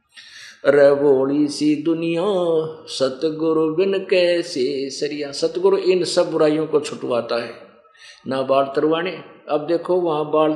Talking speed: 120 wpm